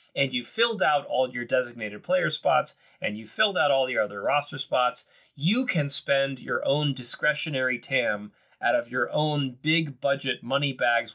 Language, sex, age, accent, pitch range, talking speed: English, male, 30-49, American, 120-145 Hz, 170 wpm